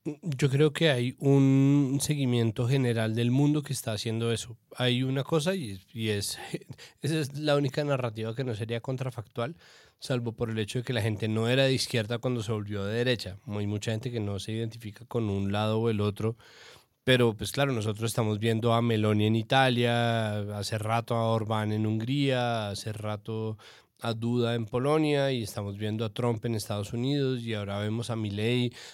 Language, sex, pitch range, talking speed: Spanish, male, 110-130 Hz, 195 wpm